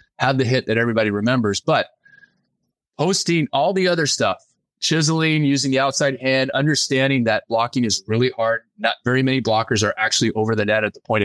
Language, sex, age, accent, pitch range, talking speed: English, male, 30-49, American, 110-140 Hz, 185 wpm